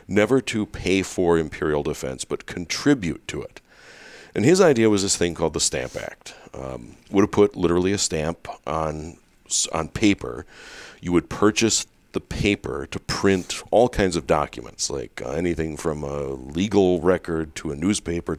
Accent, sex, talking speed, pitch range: American, male, 165 wpm, 80-95 Hz